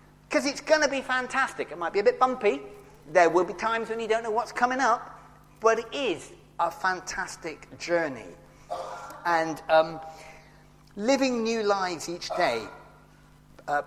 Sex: male